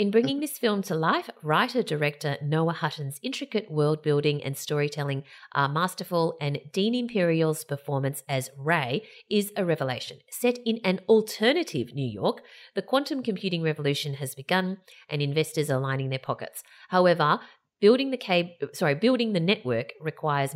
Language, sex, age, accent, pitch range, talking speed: English, female, 30-49, Australian, 145-205 Hz, 150 wpm